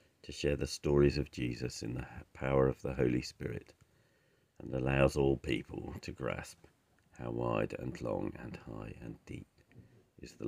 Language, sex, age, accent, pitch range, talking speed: English, male, 50-69, British, 65-100 Hz, 165 wpm